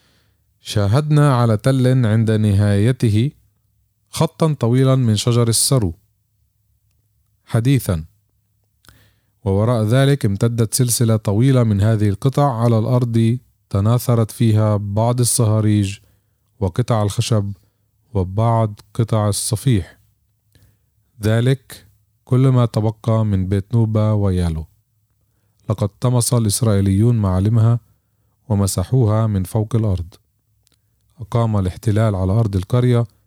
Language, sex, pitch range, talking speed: Arabic, male, 105-115 Hz, 90 wpm